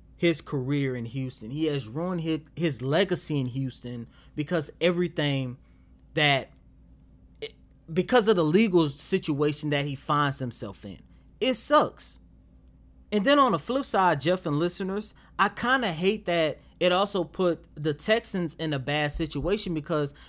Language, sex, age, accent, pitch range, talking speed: English, male, 20-39, American, 145-215 Hz, 150 wpm